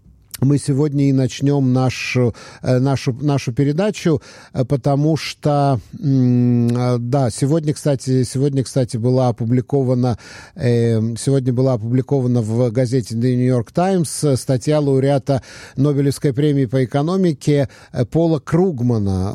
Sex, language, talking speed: male, English, 105 wpm